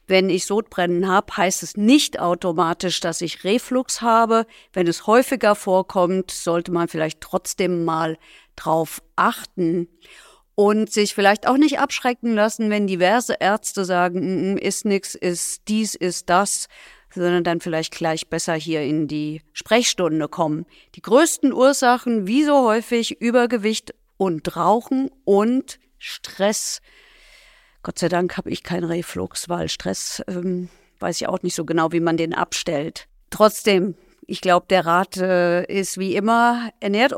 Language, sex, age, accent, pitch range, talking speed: German, female, 50-69, German, 175-215 Hz, 145 wpm